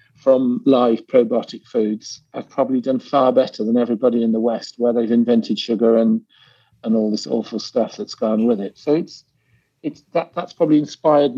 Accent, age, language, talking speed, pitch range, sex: British, 50-69, English, 190 wpm, 115-150 Hz, male